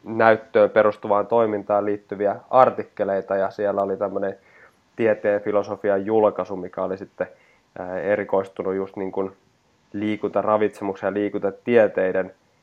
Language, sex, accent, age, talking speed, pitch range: Finnish, male, native, 20-39, 105 wpm, 95-105 Hz